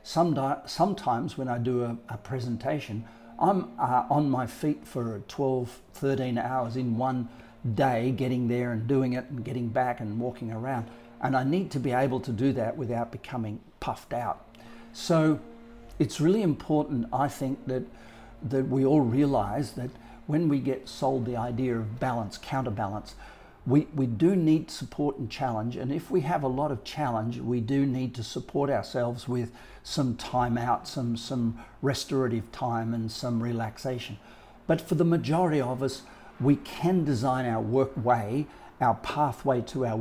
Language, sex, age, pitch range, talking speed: English, male, 50-69, 115-140 Hz, 165 wpm